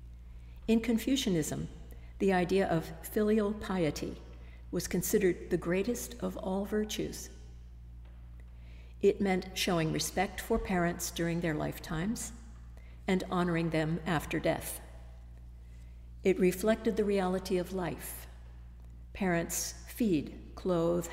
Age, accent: 60-79, American